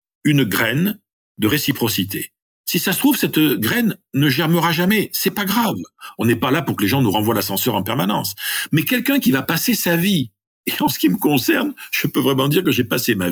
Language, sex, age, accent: French, male, 50-69, French